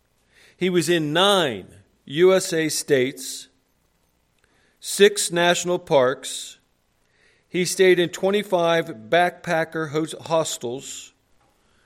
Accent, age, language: American, 50-69, English